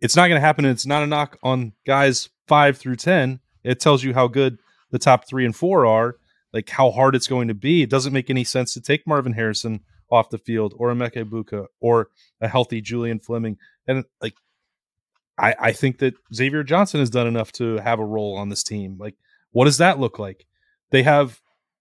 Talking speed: 220 wpm